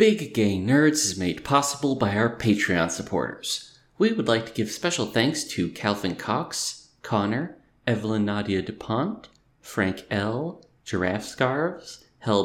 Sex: male